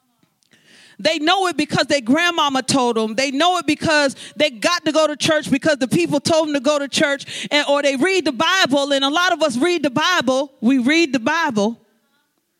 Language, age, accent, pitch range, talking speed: English, 40-59, American, 265-360 Hz, 215 wpm